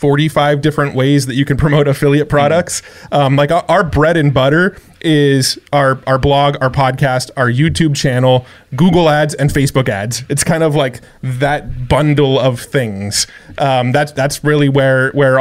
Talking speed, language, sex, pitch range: 170 wpm, English, male, 130-150 Hz